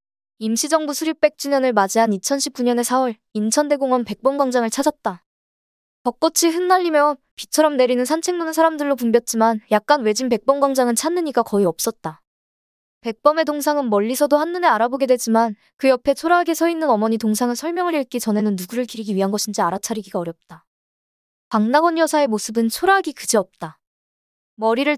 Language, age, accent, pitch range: Korean, 20-39, native, 220-295 Hz